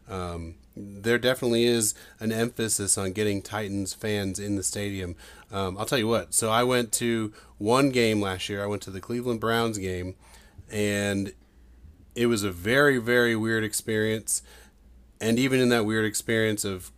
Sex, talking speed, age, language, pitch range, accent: male, 170 wpm, 30-49, English, 95-110 Hz, American